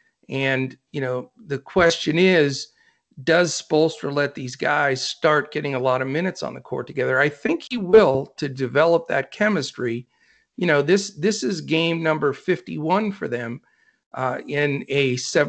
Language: English